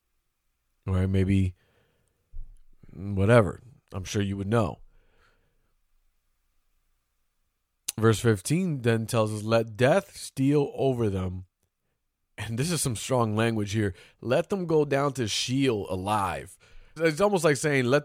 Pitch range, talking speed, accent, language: 100-130 Hz, 125 wpm, American, English